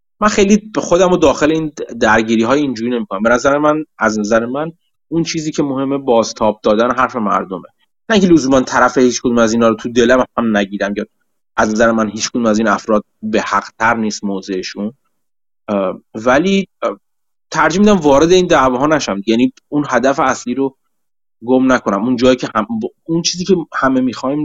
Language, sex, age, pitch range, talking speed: Persian, male, 30-49, 110-150 Hz, 170 wpm